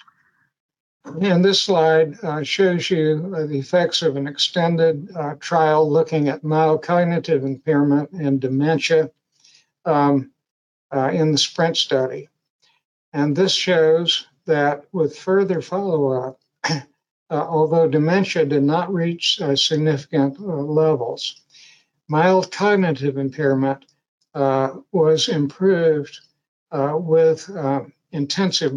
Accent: American